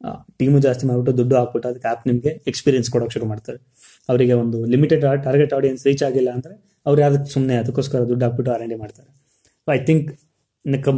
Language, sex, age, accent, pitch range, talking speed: Kannada, male, 20-39, native, 120-140 Hz, 165 wpm